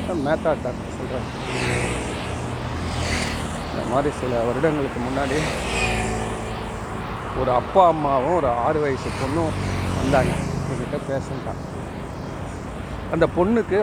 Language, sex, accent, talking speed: Tamil, male, native, 80 wpm